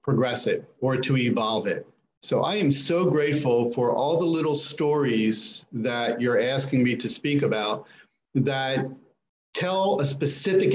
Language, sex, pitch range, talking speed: English, male, 120-140 Hz, 150 wpm